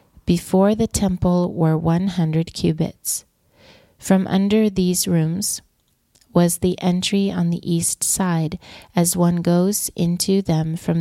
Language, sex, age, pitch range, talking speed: English, female, 40-59, 170-195 Hz, 125 wpm